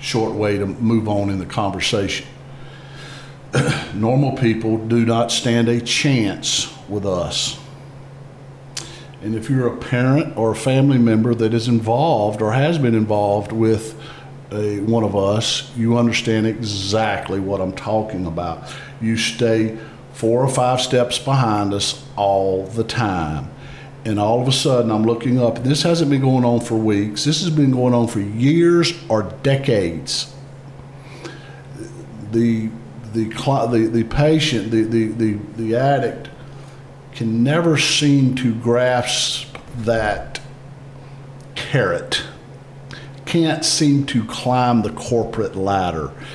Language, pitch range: English, 110-135 Hz